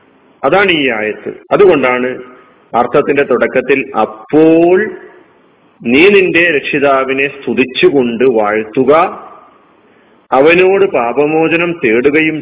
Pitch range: 130-175 Hz